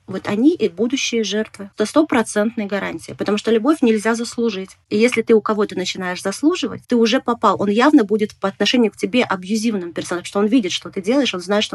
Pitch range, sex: 205-260 Hz, female